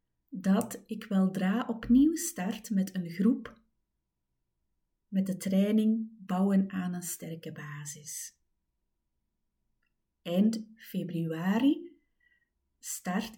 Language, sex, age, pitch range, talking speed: Dutch, female, 30-49, 150-220 Hz, 85 wpm